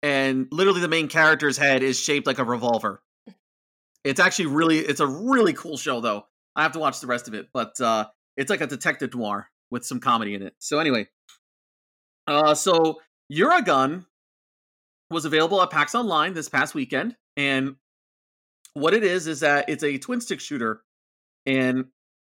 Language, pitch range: English, 125-165 Hz